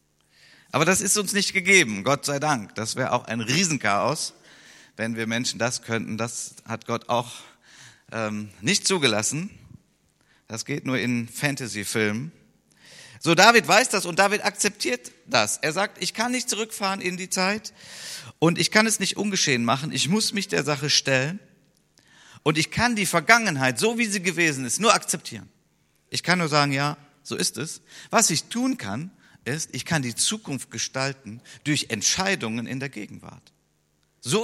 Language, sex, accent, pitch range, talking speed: German, male, German, 120-185 Hz, 170 wpm